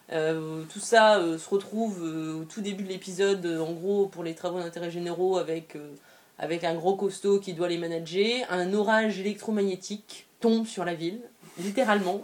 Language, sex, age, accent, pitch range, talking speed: French, female, 20-39, French, 180-220 Hz, 185 wpm